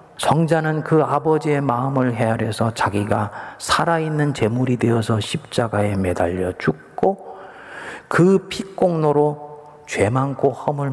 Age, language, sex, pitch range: 40-59, Korean, male, 105-165 Hz